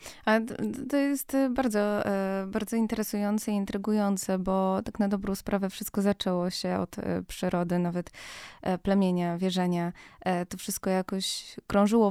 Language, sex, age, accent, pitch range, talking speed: Polish, female, 20-39, native, 185-210 Hz, 120 wpm